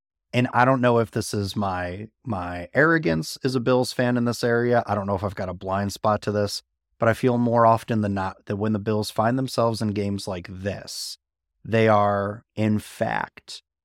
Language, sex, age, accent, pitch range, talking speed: English, male, 30-49, American, 95-115 Hz, 210 wpm